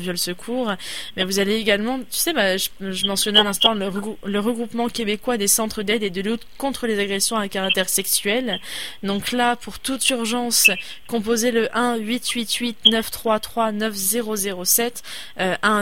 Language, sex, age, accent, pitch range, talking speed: French, female, 20-39, French, 195-230 Hz, 145 wpm